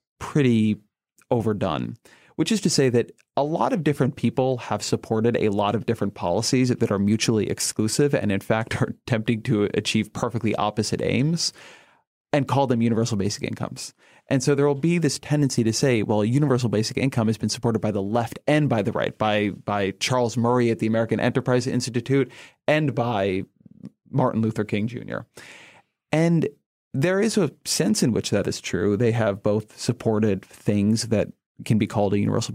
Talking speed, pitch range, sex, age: 185 wpm, 105-125 Hz, male, 30-49